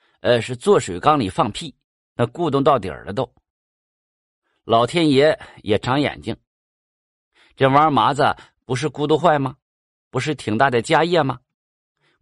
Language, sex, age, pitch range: Chinese, male, 50-69, 110-150 Hz